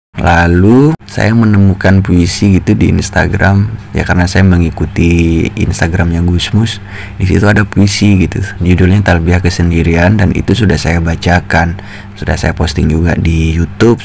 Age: 20-39